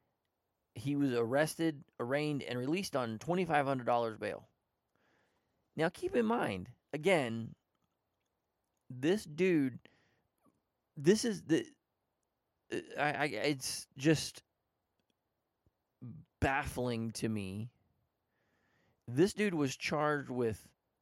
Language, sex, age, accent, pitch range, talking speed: English, male, 30-49, American, 120-155 Hz, 90 wpm